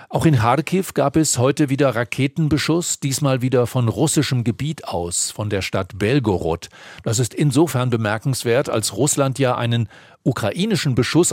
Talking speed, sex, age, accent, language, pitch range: 150 wpm, male, 50-69, German, German, 115-145 Hz